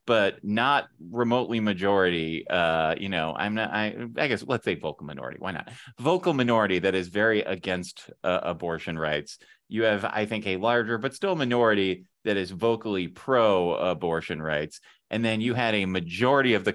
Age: 30-49